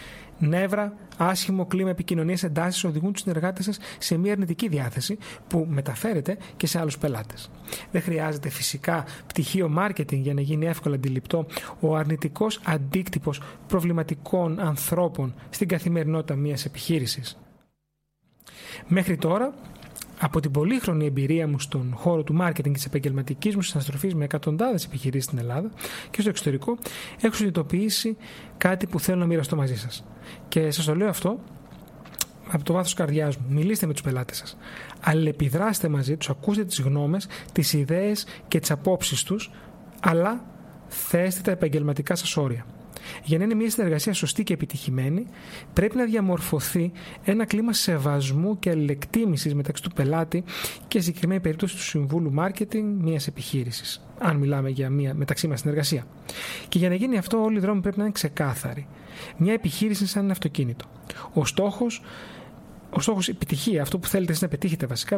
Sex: male